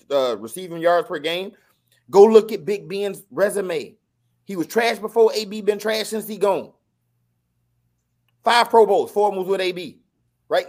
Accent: American